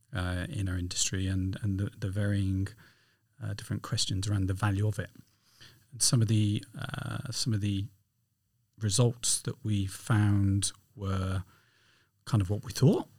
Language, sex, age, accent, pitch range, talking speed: English, male, 40-59, British, 100-120 Hz, 160 wpm